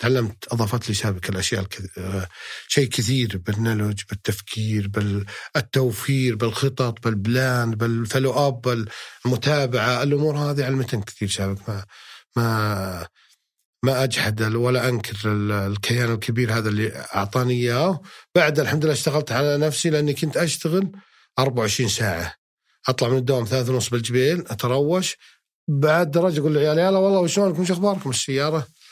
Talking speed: 125 wpm